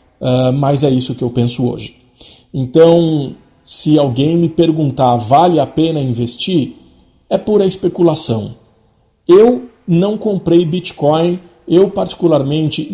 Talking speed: 115 wpm